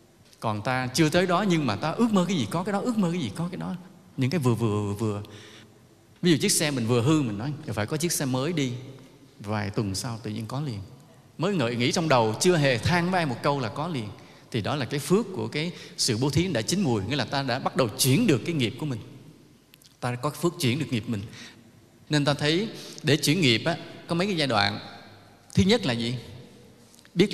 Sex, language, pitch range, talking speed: male, English, 115-165 Hz, 250 wpm